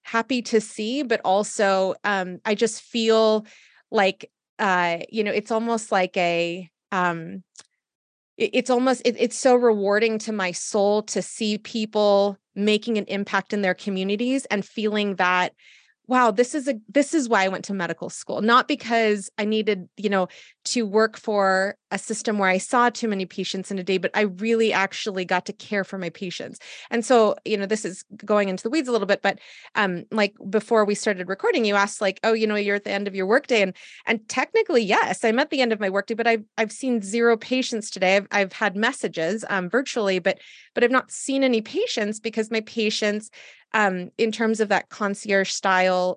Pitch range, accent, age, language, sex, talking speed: 195-230 Hz, American, 30-49, English, female, 200 wpm